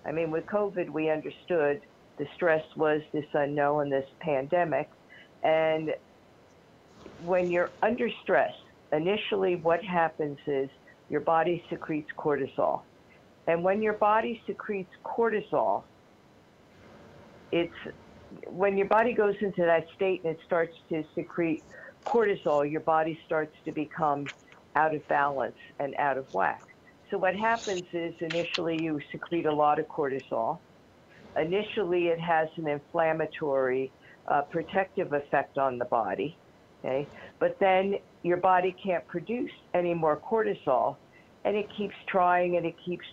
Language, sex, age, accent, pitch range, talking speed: English, female, 50-69, American, 150-185 Hz, 135 wpm